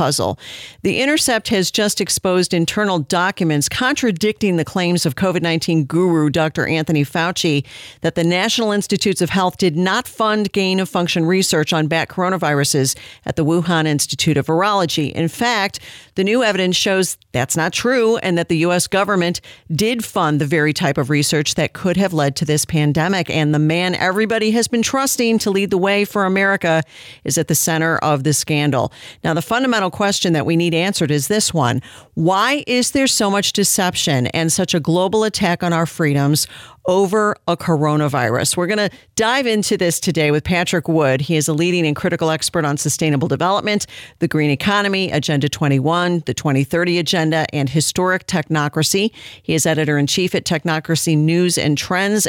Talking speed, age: 175 wpm, 50-69